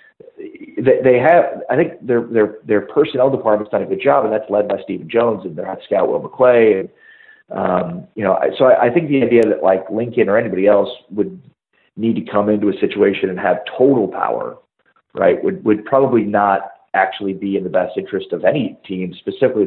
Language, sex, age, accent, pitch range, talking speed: English, male, 40-59, American, 105-175 Hz, 205 wpm